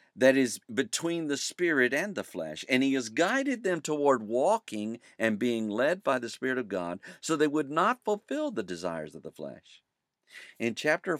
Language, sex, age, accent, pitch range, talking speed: English, male, 50-69, American, 110-170 Hz, 190 wpm